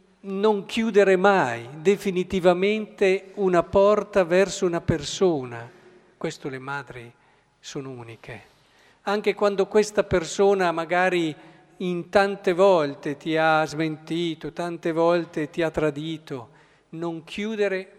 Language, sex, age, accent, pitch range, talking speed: Italian, male, 50-69, native, 135-185 Hz, 105 wpm